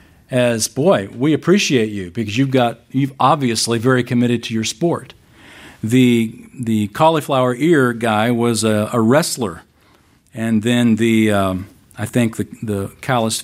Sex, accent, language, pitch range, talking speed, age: male, American, English, 105-135 Hz, 145 wpm, 50-69